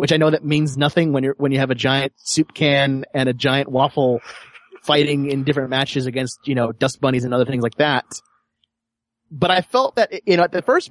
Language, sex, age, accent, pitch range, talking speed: English, male, 30-49, American, 125-150 Hz, 235 wpm